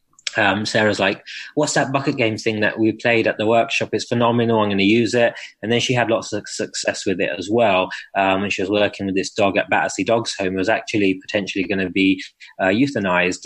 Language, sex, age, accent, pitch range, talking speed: English, male, 20-39, British, 95-110 Hz, 235 wpm